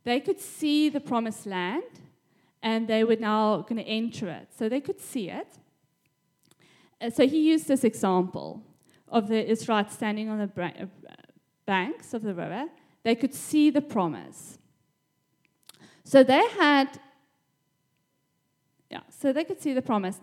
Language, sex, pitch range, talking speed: English, female, 205-270 Hz, 145 wpm